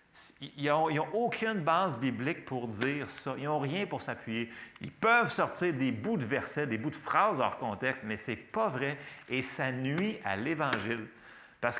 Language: French